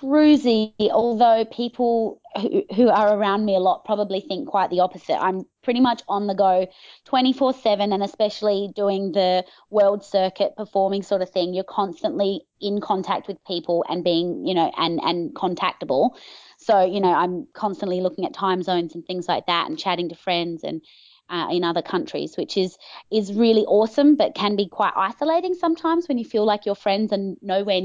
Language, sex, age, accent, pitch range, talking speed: English, female, 20-39, Australian, 175-220 Hz, 185 wpm